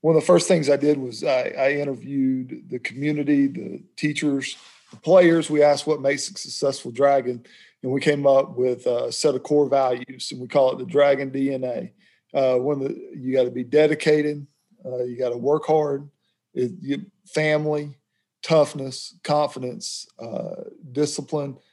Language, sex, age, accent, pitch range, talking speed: English, male, 40-59, American, 130-150 Hz, 165 wpm